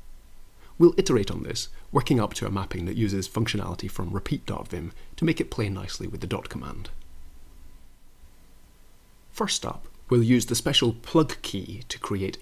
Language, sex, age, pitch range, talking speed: English, male, 30-49, 90-120 Hz, 160 wpm